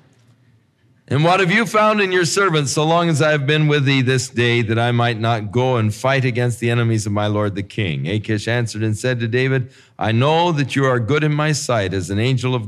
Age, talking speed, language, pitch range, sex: 50-69, 245 wpm, English, 110-145 Hz, male